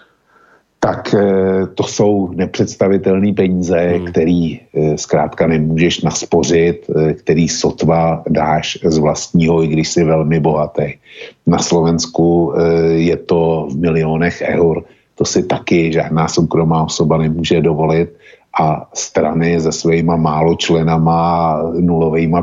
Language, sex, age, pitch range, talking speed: Slovak, male, 50-69, 80-85 Hz, 110 wpm